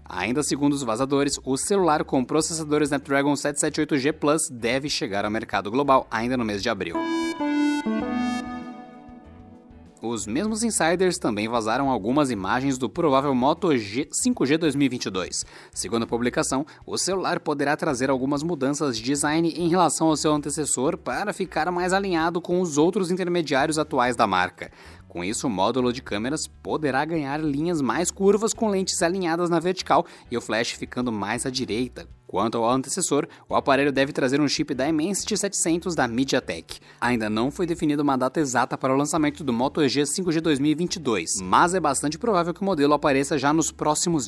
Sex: male